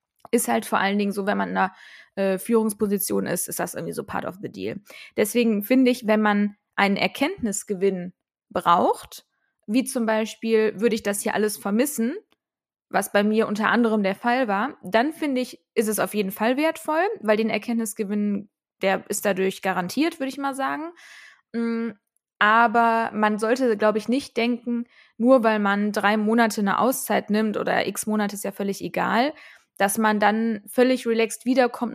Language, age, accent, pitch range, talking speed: German, 20-39, German, 205-245 Hz, 175 wpm